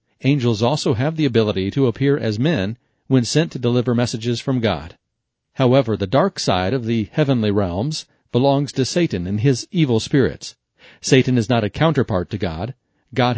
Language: English